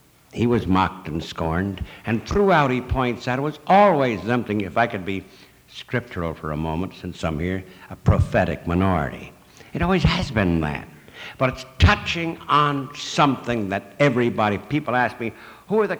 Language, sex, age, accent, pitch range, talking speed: English, male, 60-79, American, 100-155 Hz, 175 wpm